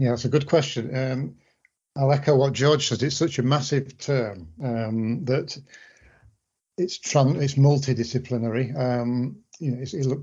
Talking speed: 165 wpm